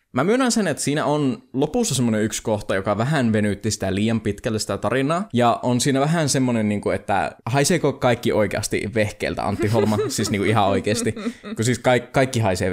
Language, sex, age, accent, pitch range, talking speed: Finnish, male, 20-39, native, 105-135 Hz, 175 wpm